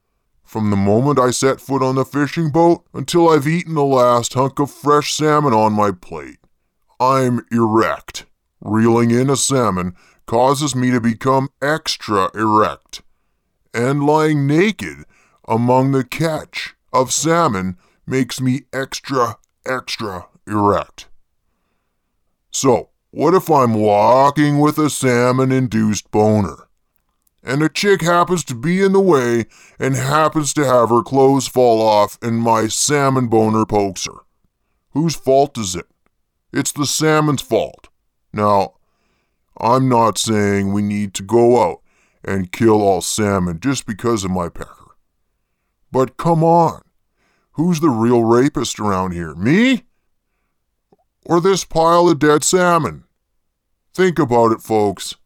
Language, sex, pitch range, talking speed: English, female, 110-150 Hz, 135 wpm